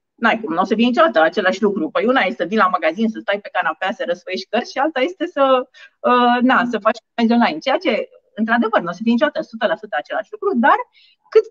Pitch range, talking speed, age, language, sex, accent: 215-280 Hz, 235 wpm, 30-49, Romanian, female, native